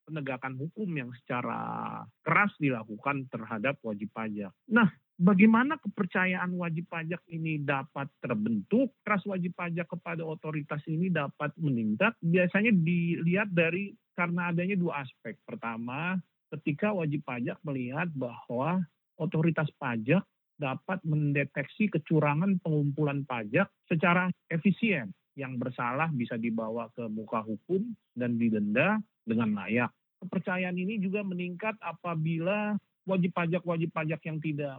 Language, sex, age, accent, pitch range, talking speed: Indonesian, male, 40-59, native, 135-180 Hz, 120 wpm